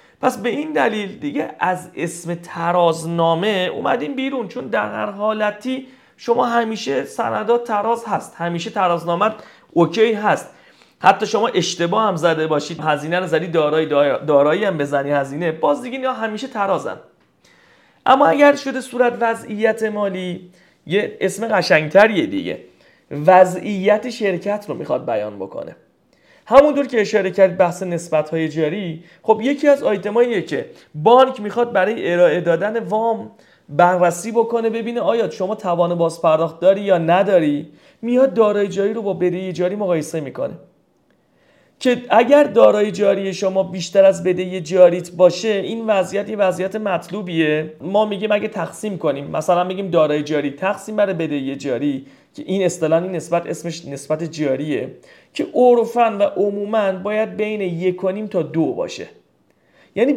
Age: 30-49